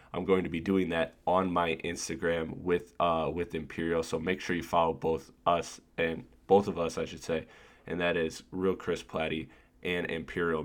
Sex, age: male, 20-39